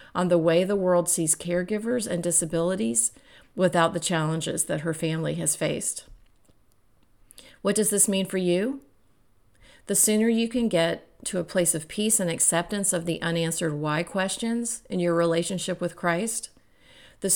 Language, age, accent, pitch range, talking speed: English, 40-59, American, 165-195 Hz, 160 wpm